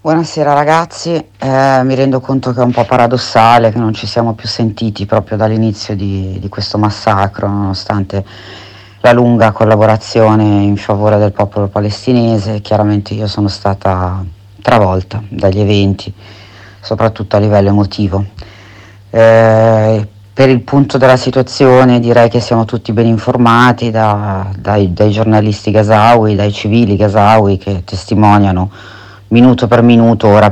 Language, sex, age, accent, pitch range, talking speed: Italian, female, 40-59, native, 100-120 Hz, 135 wpm